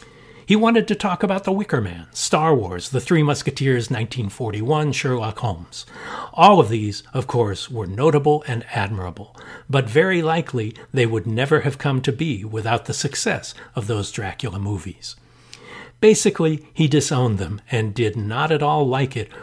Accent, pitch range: American, 115-155 Hz